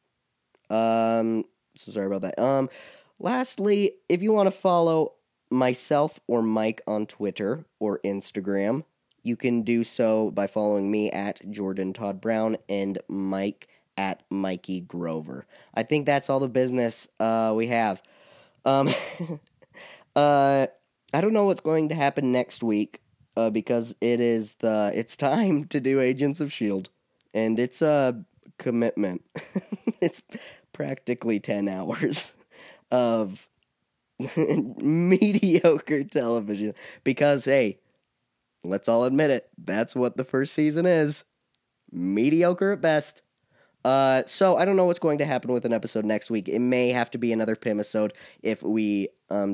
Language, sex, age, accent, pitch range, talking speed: English, male, 20-39, American, 105-140 Hz, 140 wpm